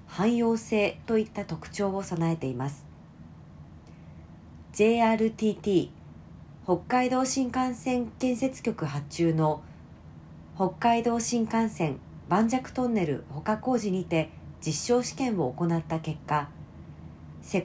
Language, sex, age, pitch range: Japanese, female, 40-59, 150-230 Hz